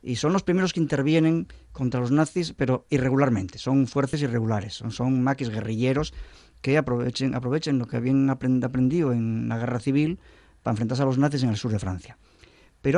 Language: Spanish